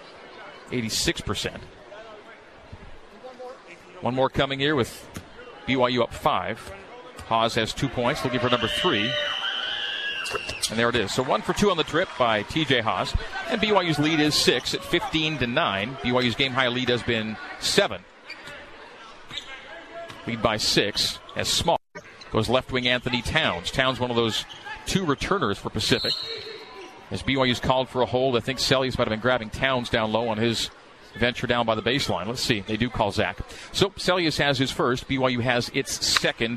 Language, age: English, 40-59